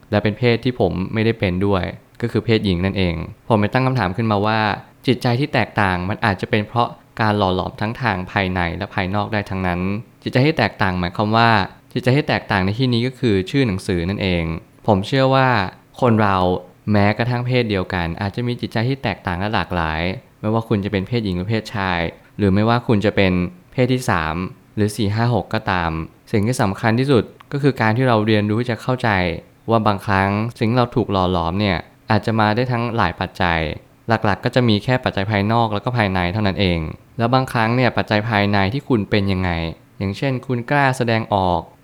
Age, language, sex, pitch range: 20-39, Thai, male, 100-120 Hz